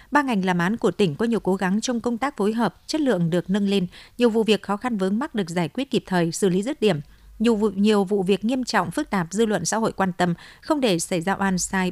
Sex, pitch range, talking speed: female, 185-230 Hz, 285 wpm